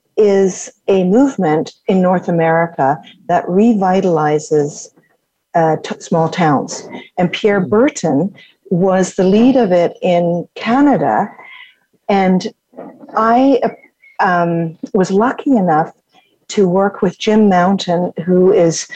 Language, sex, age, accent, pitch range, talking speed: English, female, 50-69, American, 180-235 Hz, 110 wpm